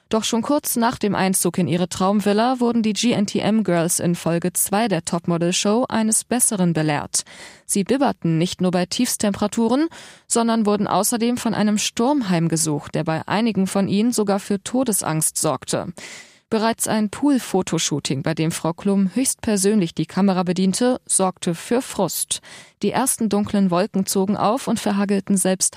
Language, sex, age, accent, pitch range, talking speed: German, female, 20-39, German, 175-225 Hz, 150 wpm